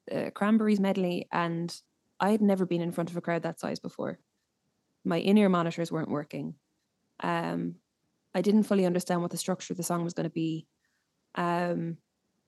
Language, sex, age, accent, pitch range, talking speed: English, female, 20-39, Irish, 175-200 Hz, 175 wpm